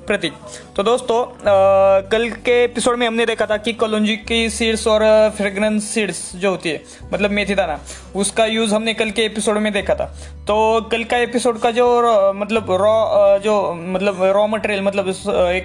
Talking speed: 180 wpm